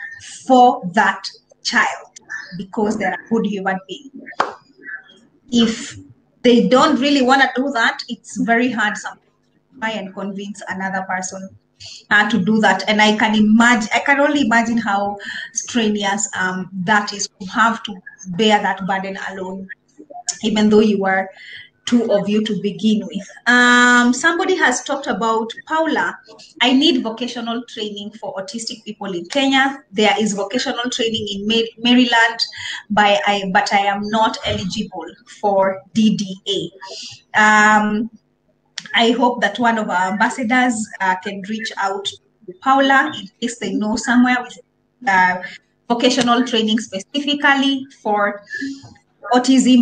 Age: 20-39